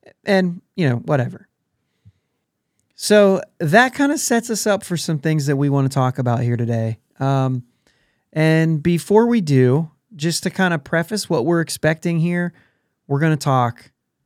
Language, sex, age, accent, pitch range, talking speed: English, male, 30-49, American, 130-170 Hz, 170 wpm